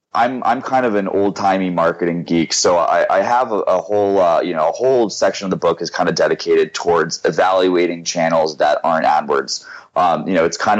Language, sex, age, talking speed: English, male, 30-49, 215 wpm